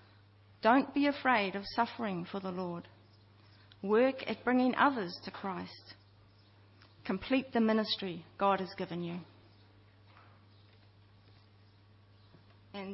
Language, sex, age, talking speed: English, female, 40-59, 100 wpm